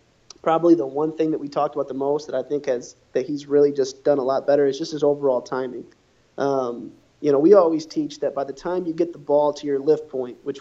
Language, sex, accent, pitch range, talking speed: English, male, American, 135-160 Hz, 260 wpm